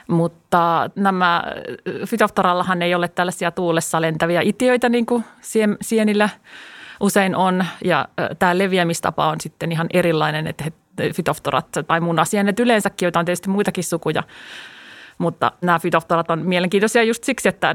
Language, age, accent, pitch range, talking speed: Finnish, 30-49, native, 170-210 Hz, 135 wpm